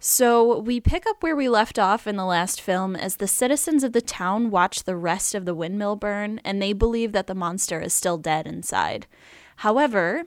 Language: English